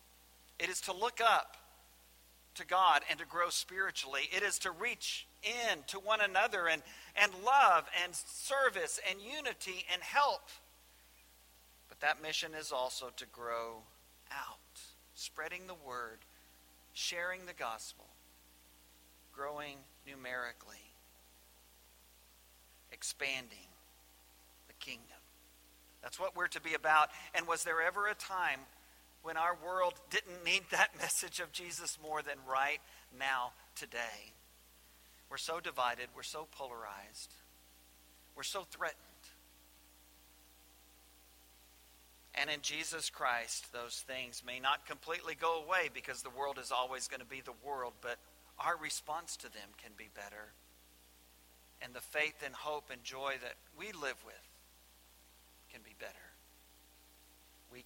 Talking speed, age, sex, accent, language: 130 wpm, 50-69, male, American, English